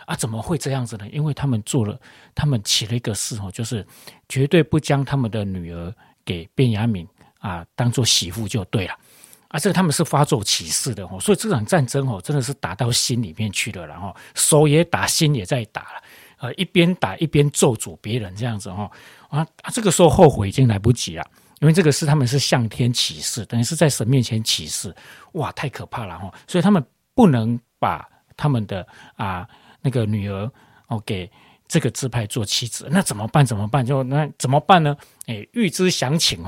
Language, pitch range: Chinese, 115-155 Hz